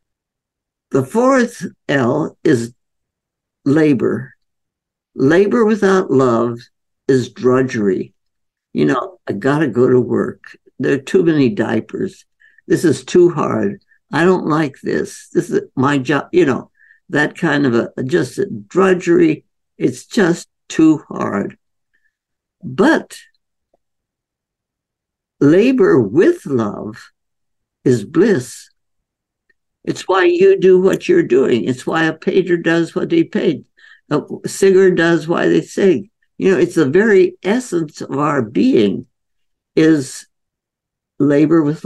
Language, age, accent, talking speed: English, 60-79, American, 120 wpm